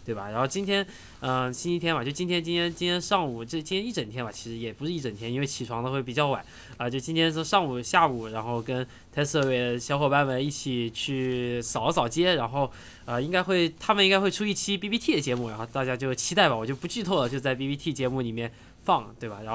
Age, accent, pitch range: 20-39, native, 120-165 Hz